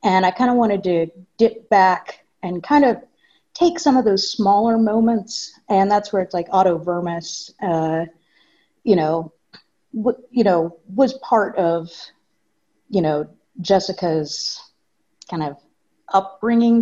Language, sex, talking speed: English, female, 140 wpm